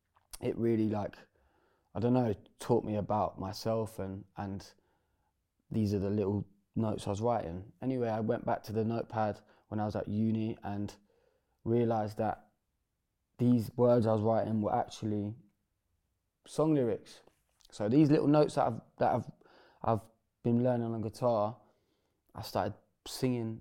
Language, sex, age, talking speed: English, male, 20-39, 155 wpm